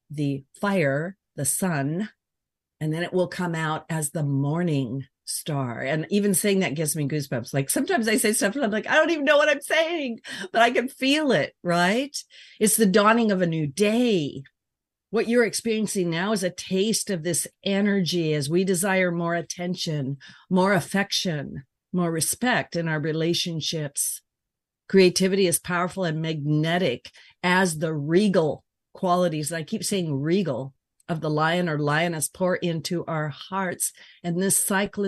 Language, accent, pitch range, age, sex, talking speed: English, American, 150-190 Hz, 50-69, female, 165 wpm